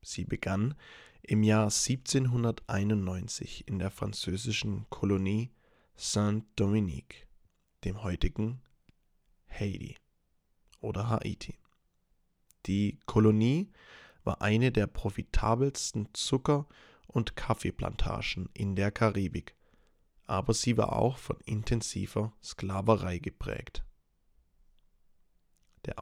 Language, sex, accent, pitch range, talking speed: English, male, German, 95-115 Hz, 85 wpm